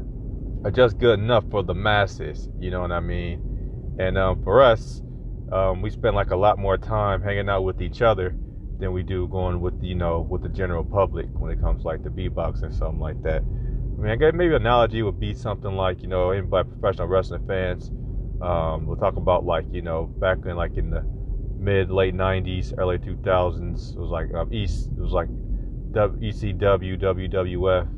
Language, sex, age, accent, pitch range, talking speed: English, male, 30-49, American, 90-105 Hz, 190 wpm